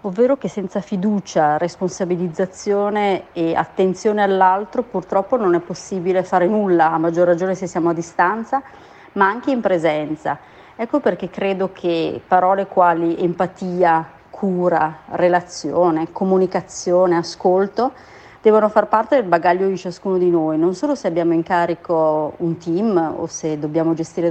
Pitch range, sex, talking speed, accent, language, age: 165-195 Hz, female, 140 wpm, native, Italian, 30-49